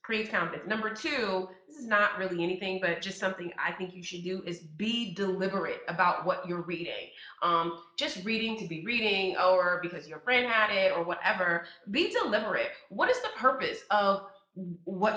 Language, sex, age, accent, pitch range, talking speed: English, female, 30-49, American, 175-215 Hz, 180 wpm